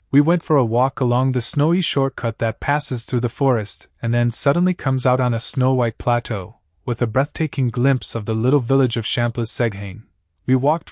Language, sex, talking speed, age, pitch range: Italian, male, 200 wpm, 20-39, 110-140 Hz